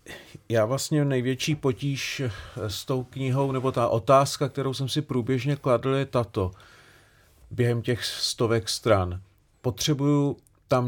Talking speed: 125 wpm